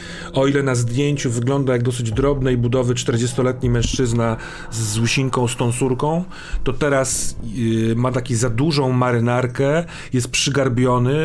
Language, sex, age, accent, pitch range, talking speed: Polish, male, 40-59, native, 115-145 Hz, 140 wpm